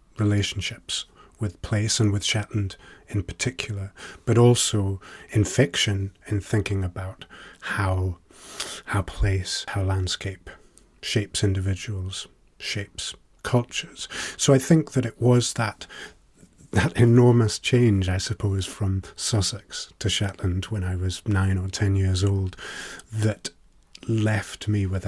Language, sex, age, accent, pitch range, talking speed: English, male, 30-49, British, 95-115 Hz, 125 wpm